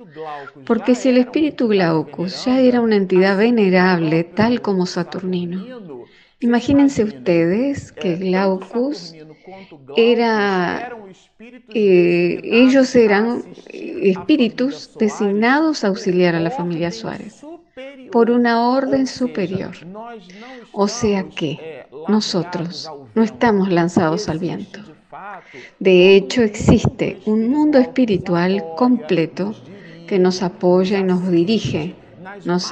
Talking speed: 105 wpm